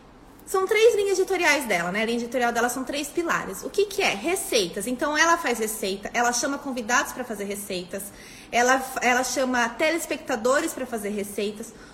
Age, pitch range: 20-39, 220-315 Hz